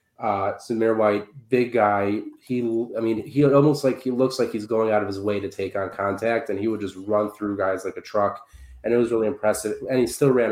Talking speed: 245 wpm